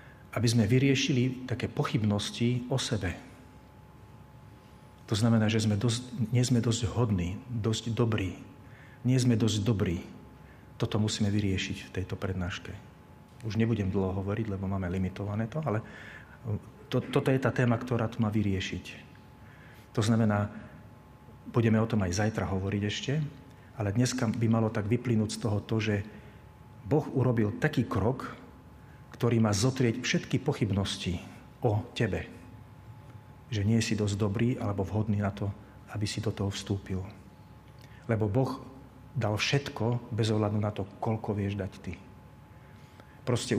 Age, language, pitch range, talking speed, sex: 40-59, Slovak, 100-120 Hz, 140 wpm, male